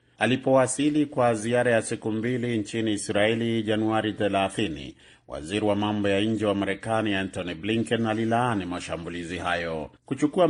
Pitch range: 100-125 Hz